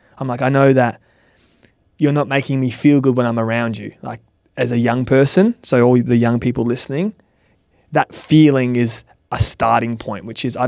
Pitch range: 115-135 Hz